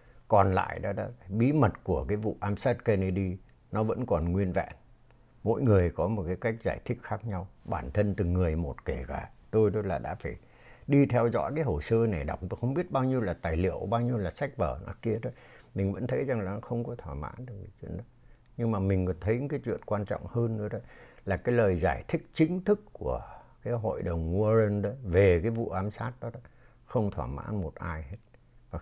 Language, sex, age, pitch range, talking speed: Vietnamese, male, 60-79, 90-120 Hz, 240 wpm